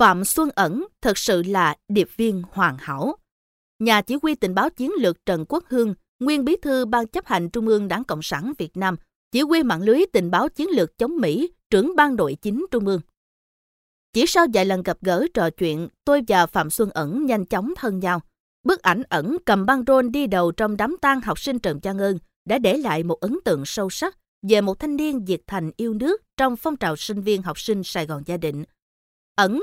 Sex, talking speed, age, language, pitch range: female, 225 wpm, 20-39, Vietnamese, 180-270 Hz